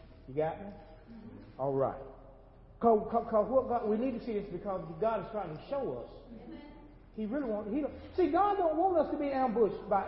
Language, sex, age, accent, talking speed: English, male, 40-59, American, 195 wpm